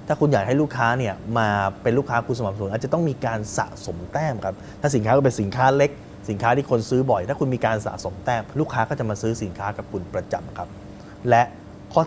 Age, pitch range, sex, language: 20-39, 100-150 Hz, male, Thai